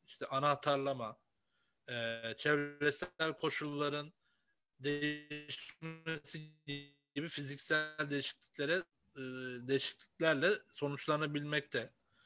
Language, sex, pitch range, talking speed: Turkish, male, 130-155 Hz, 50 wpm